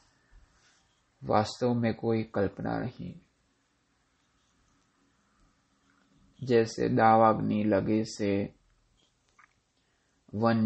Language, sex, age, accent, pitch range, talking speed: Hindi, male, 30-49, native, 95-110 Hz, 55 wpm